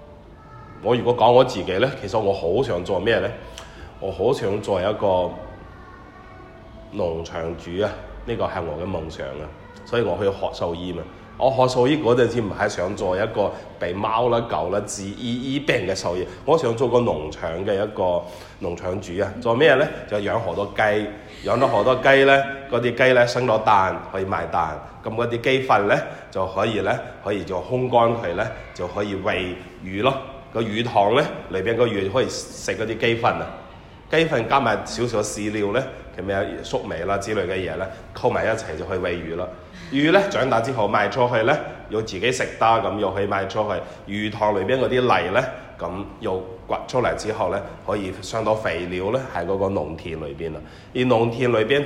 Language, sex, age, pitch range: Chinese, male, 30-49, 90-120 Hz